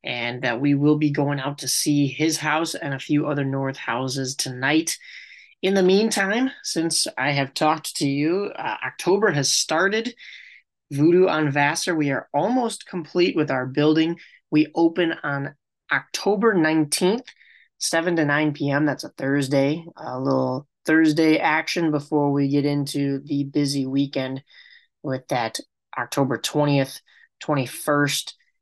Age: 20-39